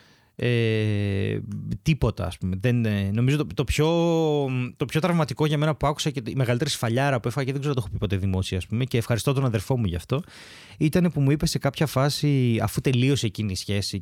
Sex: male